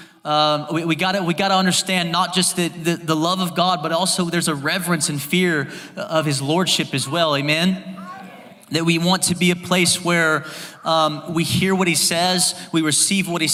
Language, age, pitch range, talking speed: English, 20-39, 155-190 Hz, 215 wpm